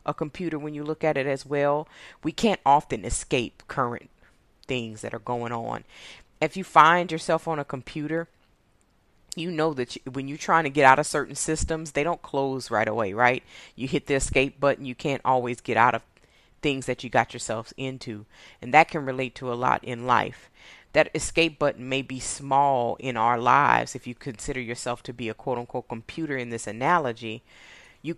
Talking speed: 195 wpm